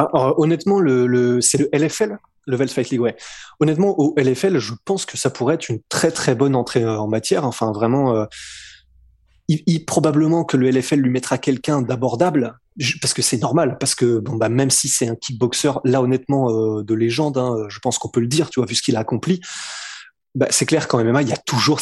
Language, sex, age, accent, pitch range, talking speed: French, male, 20-39, French, 120-155 Hz, 225 wpm